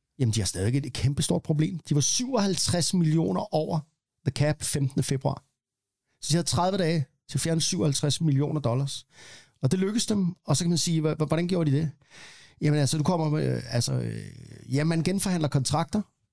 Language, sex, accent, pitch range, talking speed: Danish, male, native, 130-160 Hz, 185 wpm